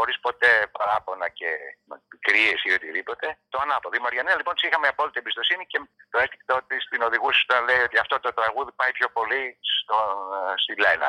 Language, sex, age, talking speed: Greek, male, 60-79, 175 wpm